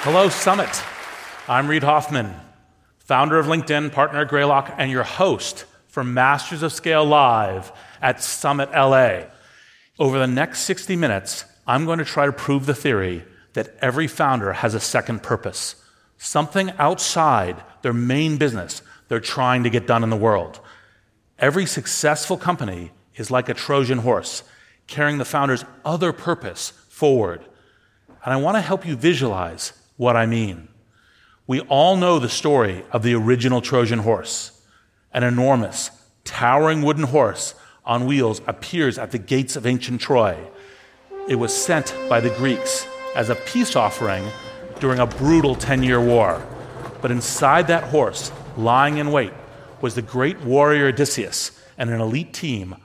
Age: 40-59